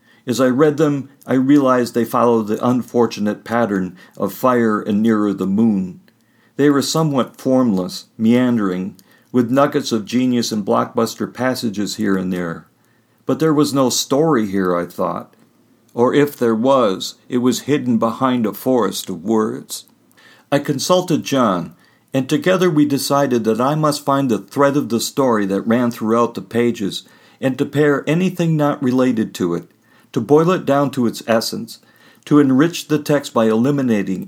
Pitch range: 115-145 Hz